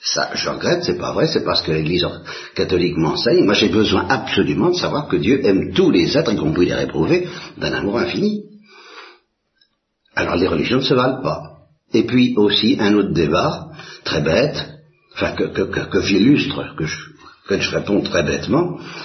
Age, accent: 60-79, French